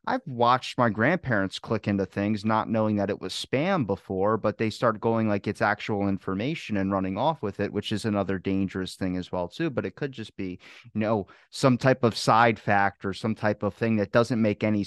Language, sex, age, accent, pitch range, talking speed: English, male, 30-49, American, 105-135 Hz, 225 wpm